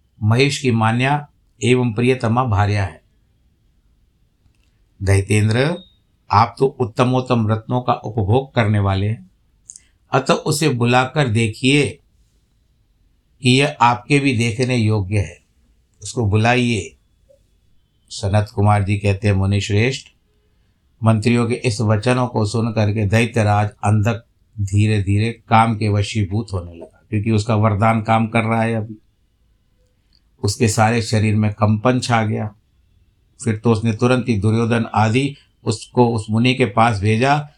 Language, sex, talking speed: Hindi, male, 130 wpm